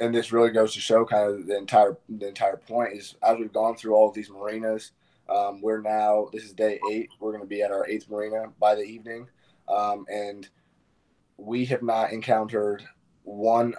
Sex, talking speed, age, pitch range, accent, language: male, 205 wpm, 20-39, 100-110 Hz, American, English